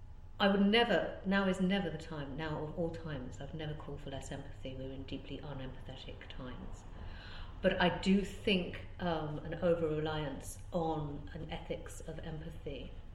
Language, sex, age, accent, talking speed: English, female, 50-69, British, 165 wpm